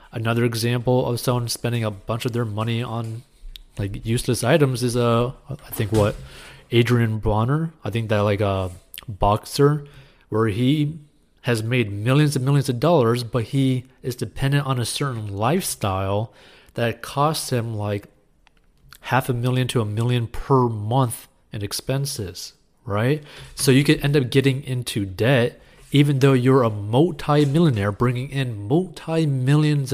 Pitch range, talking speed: 110-135 Hz, 150 wpm